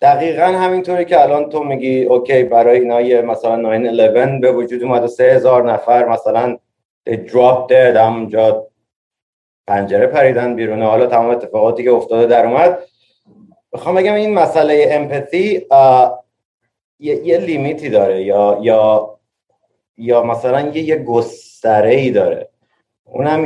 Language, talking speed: Persian, 130 wpm